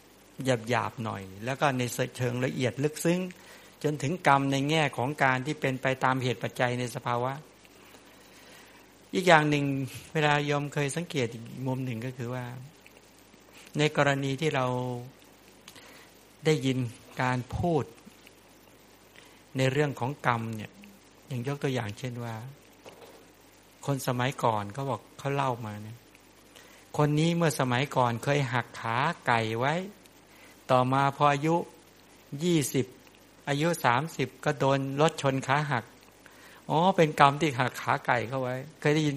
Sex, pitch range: male, 120-150 Hz